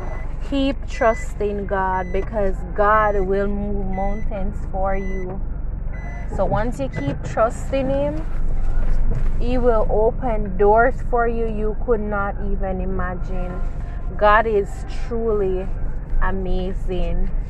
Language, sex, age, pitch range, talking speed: English, female, 20-39, 185-230 Hz, 105 wpm